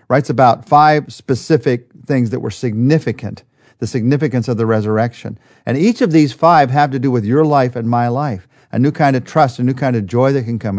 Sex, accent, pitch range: male, American, 115-145 Hz